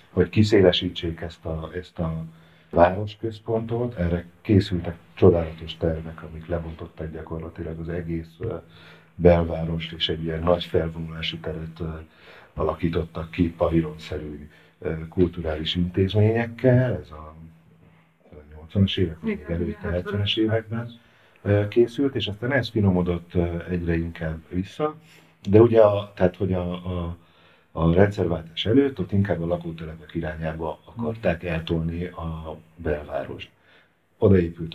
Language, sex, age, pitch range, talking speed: Hungarian, male, 50-69, 80-105 Hz, 110 wpm